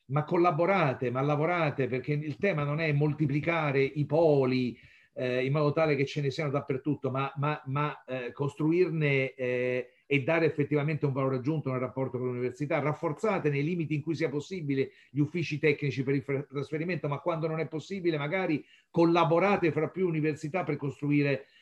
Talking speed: 170 wpm